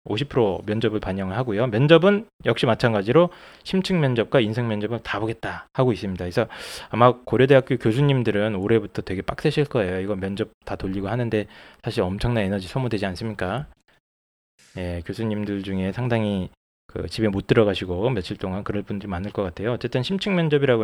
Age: 20-39